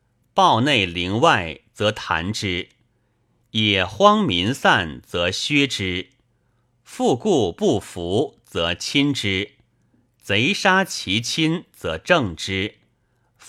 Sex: male